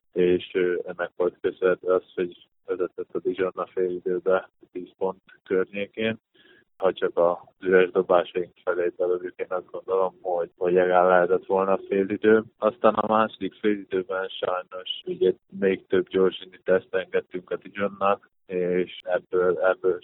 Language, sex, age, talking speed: Hungarian, male, 20-39, 145 wpm